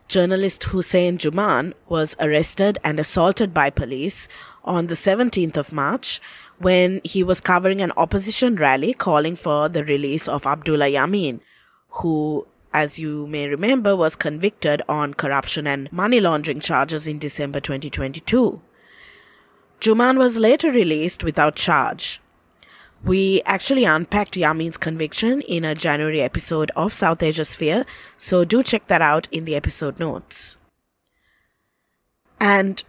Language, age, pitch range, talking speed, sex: English, 20-39, 150-190 Hz, 135 wpm, female